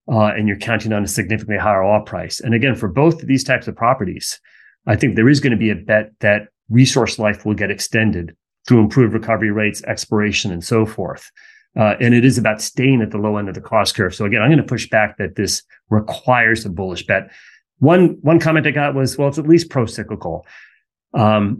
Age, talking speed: 30-49, 225 wpm